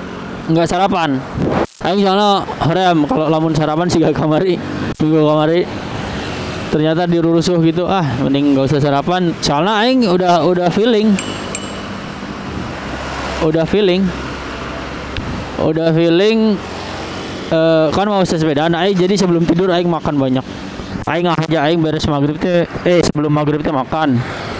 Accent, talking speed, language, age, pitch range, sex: native, 125 wpm, Indonesian, 20-39, 150-180 Hz, male